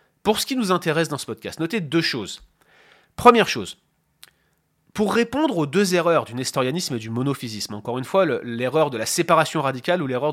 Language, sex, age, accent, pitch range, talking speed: French, male, 30-49, French, 125-180 Hz, 200 wpm